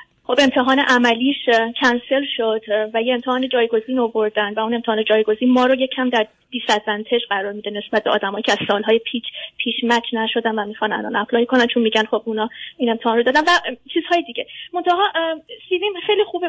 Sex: female